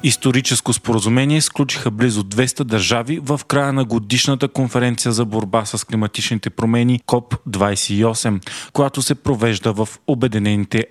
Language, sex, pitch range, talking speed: Bulgarian, male, 110-135 Hz, 120 wpm